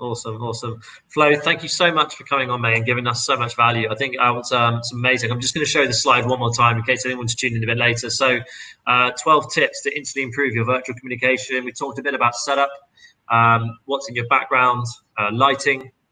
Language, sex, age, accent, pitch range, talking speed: English, male, 20-39, British, 115-130 Hz, 240 wpm